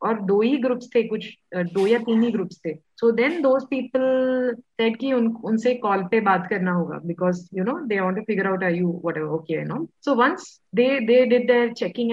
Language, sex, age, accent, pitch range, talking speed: Hindi, female, 20-39, native, 180-250 Hz, 130 wpm